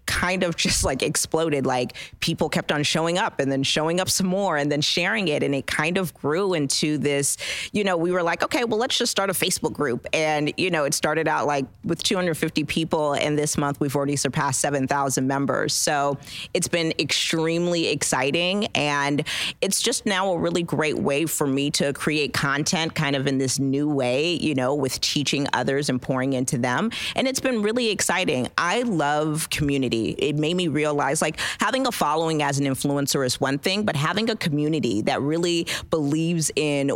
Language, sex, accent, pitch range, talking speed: English, female, American, 140-175 Hz, 200 wpm